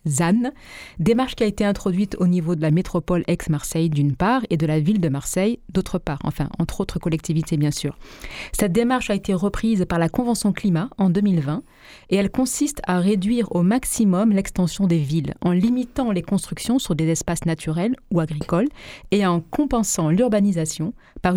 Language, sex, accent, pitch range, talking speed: French, female, French, 175-225 Hz, 180 wpm